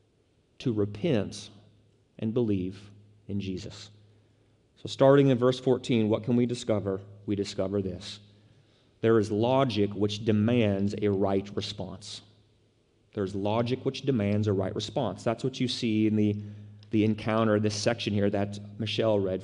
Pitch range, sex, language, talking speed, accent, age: 105-155 Hz, male, English, 145 wpm, American, 30-49